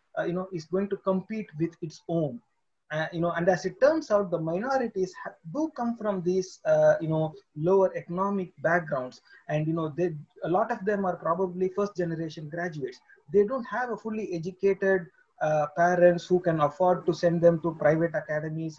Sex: male